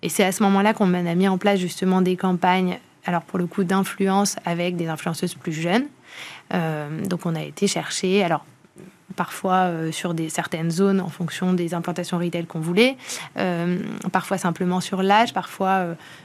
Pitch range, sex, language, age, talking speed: 180-205 Hz, female, French, 20-39, 175 wpm